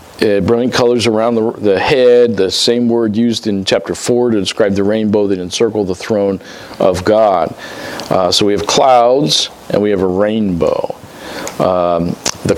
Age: 50-69